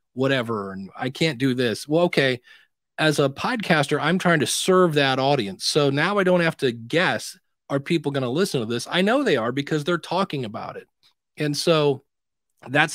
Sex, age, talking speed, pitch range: male, 40-59, 200 wpm, 130-170 Hz